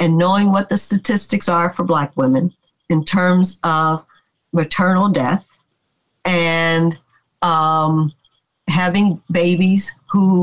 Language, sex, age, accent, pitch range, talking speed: English, female, 50-69, American, 165-210 Hz, 110 wpm